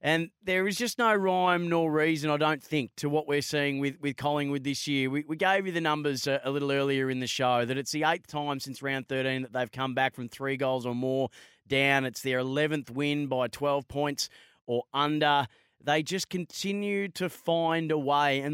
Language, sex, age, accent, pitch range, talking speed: English, male, 30-49, Australian, 130-155 Hz, 220 wpm